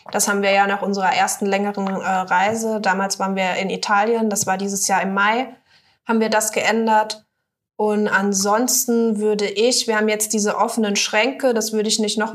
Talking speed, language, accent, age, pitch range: 195 wpm, German, German, 20-39, 200-220 Hz